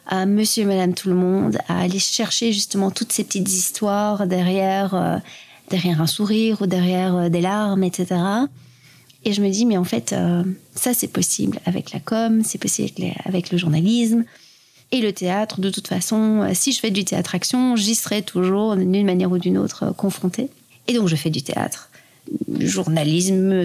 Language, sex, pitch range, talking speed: French, female, 180-210 Hz, 195 wpm